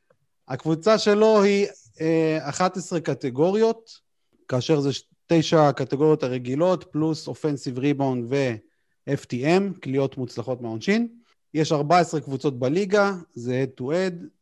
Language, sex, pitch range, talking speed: Hebrew, male, 125-180 Hz, 95 wpm